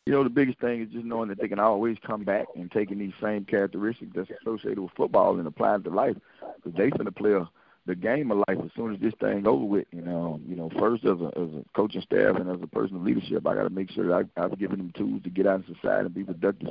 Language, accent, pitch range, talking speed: English, American, 90-100 Hz, 285 wpm